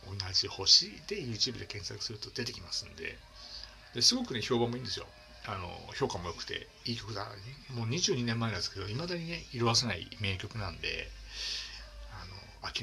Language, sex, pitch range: Japanese, male, 95-120 Hz